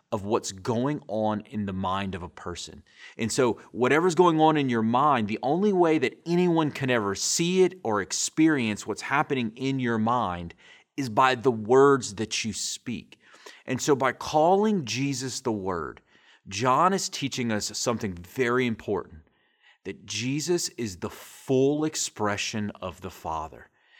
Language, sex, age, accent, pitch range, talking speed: English, male, 30-49, American, 105-140 Hz, 160 wpm